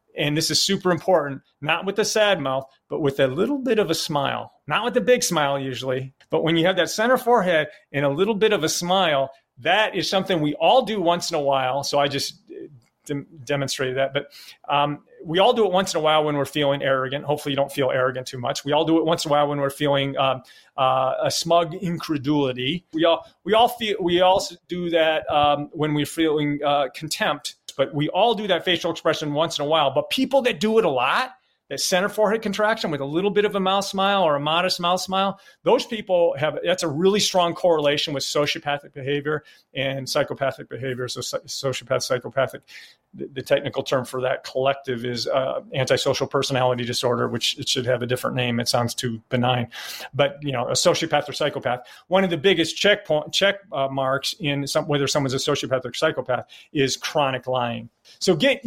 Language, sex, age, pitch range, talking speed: English, male, 40-59, 135-185 Hz, 210 wpm